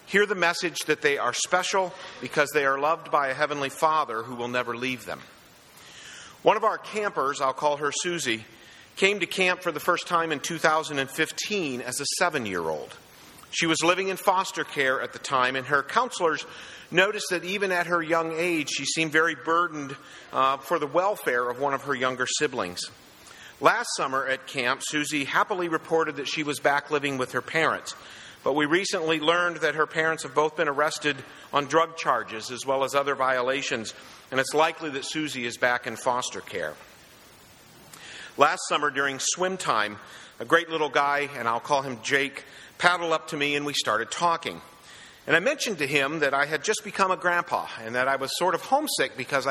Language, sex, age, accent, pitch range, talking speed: English, male, 50-69, American, 135-170 Hz, 195 wpm